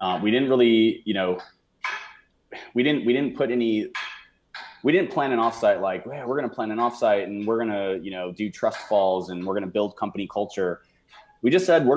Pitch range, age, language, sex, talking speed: 90-115 Hz, 20-39, English, male, 220 wpm